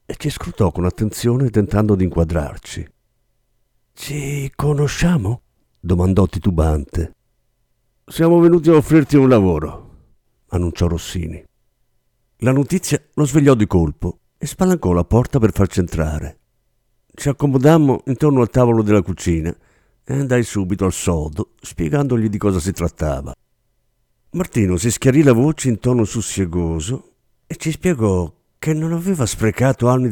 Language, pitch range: Italian, 90-135 Hz